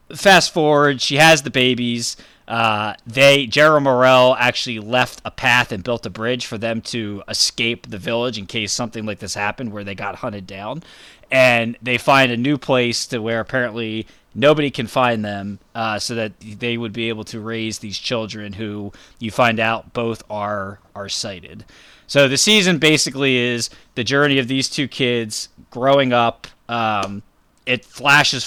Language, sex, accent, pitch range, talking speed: English, male, American, 110-130 Hz, 175 wpm